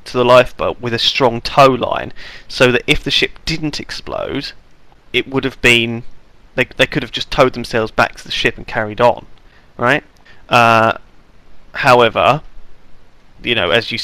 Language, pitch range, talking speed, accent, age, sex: English, 110-130 Hz, 170 wpm, British, 30-49, male